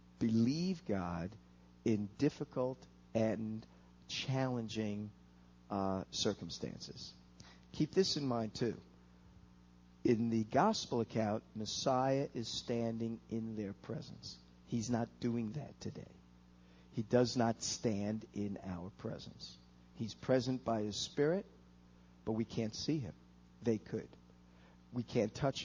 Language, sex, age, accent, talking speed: English, male, 50-69, American, 115 wpm